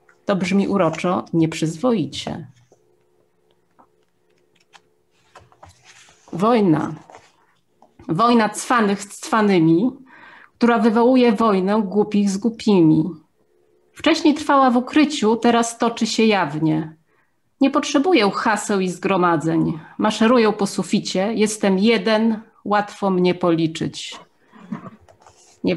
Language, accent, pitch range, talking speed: Polish, native, 175-230 Hz, 90 wpm